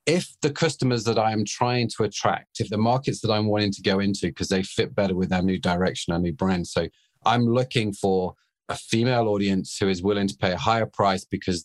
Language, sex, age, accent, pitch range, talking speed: English, male, 40-59, British, 95-120 Hz, 230 wpm